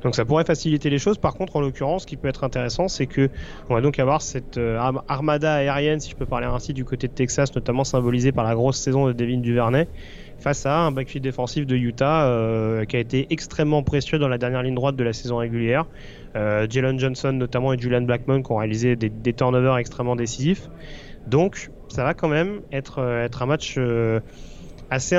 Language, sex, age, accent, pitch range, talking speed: French, male, 30-49, French, 125-155 Hz, 215 wpm